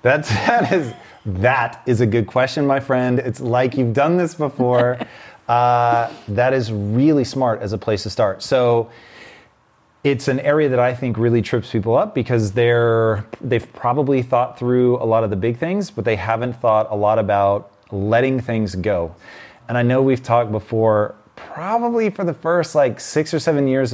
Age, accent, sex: 30-49, American, male